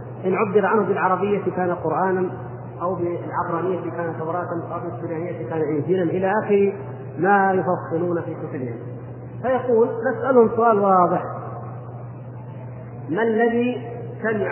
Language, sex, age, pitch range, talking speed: Arabic, male, 40-59, 130-215 Hz, 125 wpm